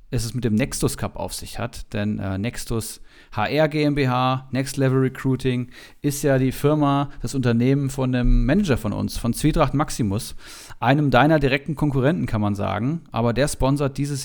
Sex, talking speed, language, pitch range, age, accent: male, 175 wpm, German, 125-150 Hz, 40-59, German